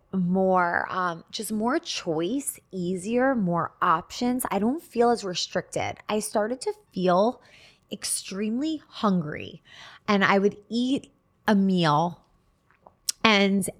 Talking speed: 115 wpm